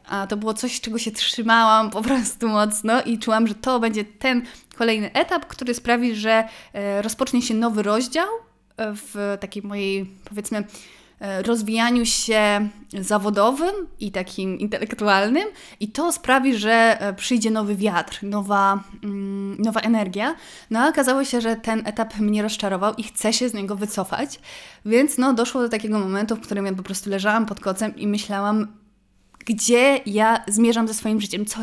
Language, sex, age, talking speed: Polish, female, 20-39, 155 wpm